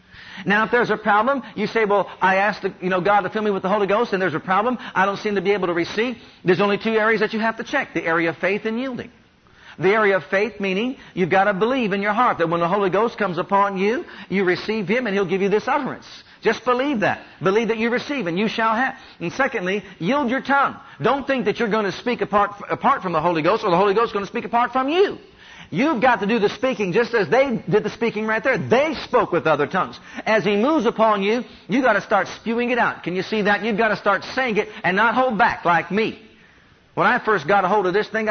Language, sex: English, male